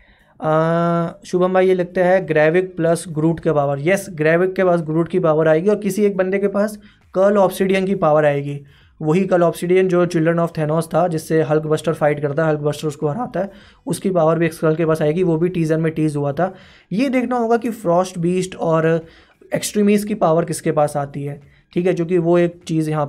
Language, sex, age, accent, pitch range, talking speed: Hindi, male, 20-39, native, 160-195 Hz, 215 wpm